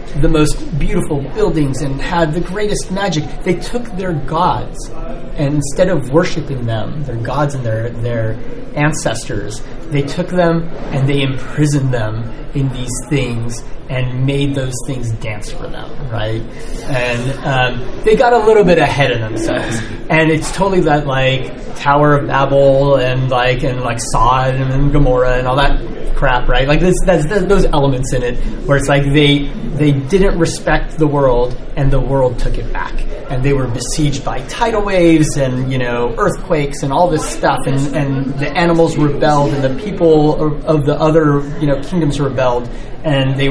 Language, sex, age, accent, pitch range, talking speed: English, male, 30-49, American, 125-155 Hz, 170 wpm